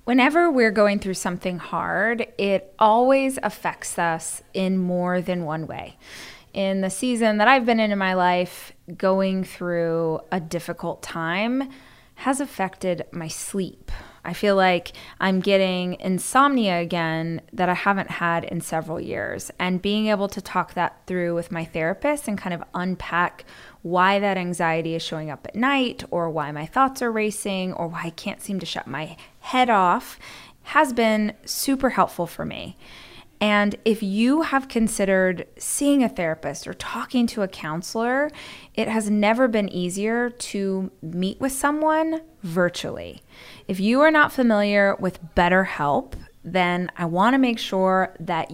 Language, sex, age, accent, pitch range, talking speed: English, female, 20-39, American, 175-220 Hz, 160 wpm